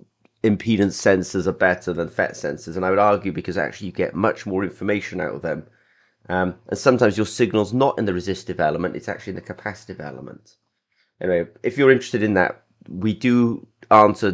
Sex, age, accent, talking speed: male, 30-49, British, 195 wpm